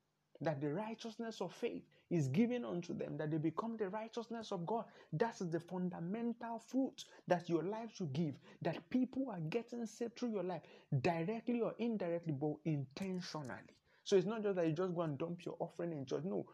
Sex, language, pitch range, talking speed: male, English, 175-240 Hz, 190 wpm